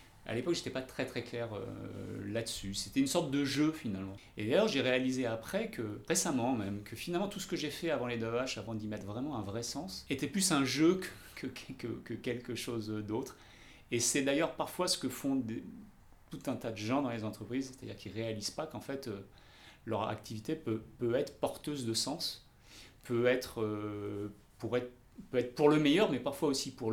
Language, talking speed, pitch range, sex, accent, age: French, 220 wpm, 110-140 Hz, male, French, 30-49